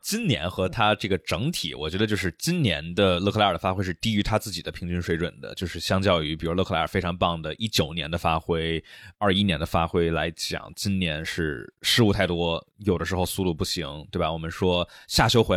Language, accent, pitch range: Chinese, native, 85-105 Hz